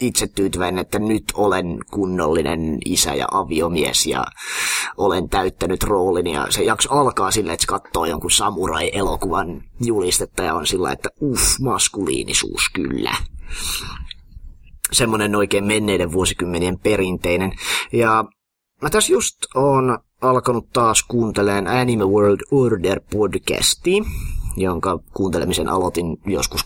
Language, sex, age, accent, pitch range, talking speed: Finnish, male, 30-49, native, 90-110 Hz, 115 wpm